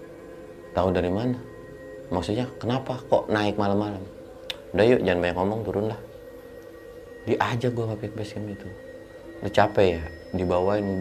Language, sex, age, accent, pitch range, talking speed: Indonesian, male, 30-49, native, 85-105 Hz, 125 wpm